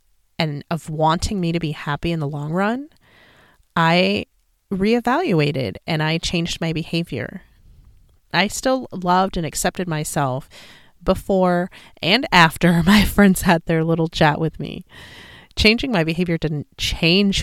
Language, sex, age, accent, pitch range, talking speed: English, female, 30-49, American, 145-185 Hz, 140 wpm